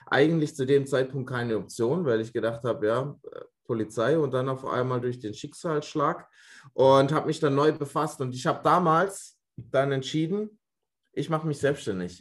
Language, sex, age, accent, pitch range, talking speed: German, male, 20-39, German, 110-140 Hz, 170 wpm